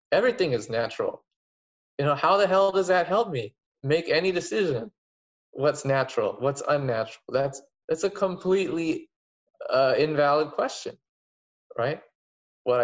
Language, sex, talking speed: English, male, 130 wpm